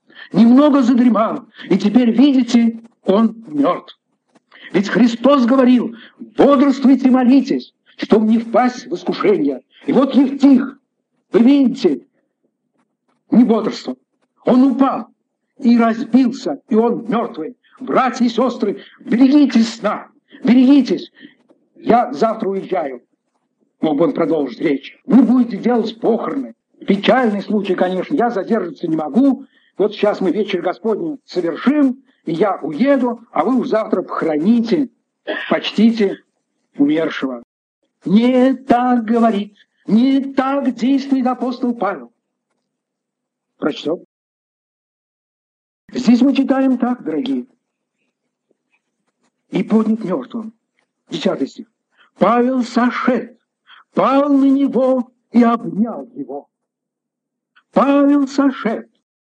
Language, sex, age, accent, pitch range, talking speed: Russian, male, 60-79, native, 225-265 Hz, 105 wpm